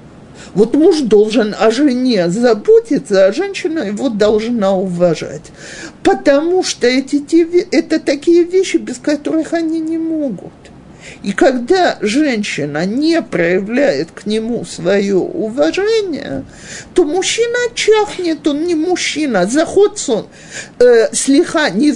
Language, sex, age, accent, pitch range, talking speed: Russian, male, 50-69, native, 210-325 Hz, 115 wpm